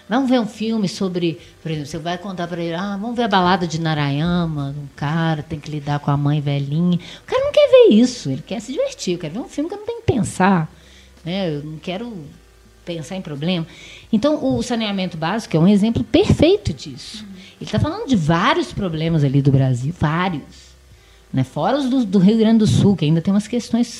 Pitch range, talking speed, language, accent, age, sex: 150-230 Hz, 220 wpm, Portuguese, Brazilian, 20-39, female